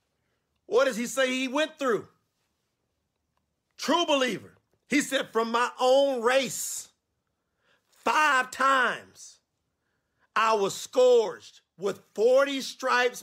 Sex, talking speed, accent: male, 105 wpm, American